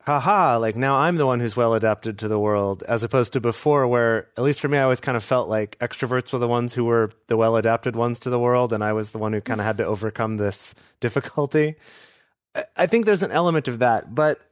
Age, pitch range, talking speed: 30-49, 105-125 Hz, 250 wpm